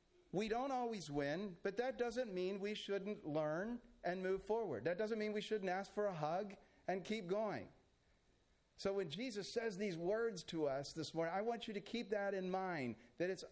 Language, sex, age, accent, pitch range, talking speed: English, male, 40-59, American, 125-195 Hz, 205 wpm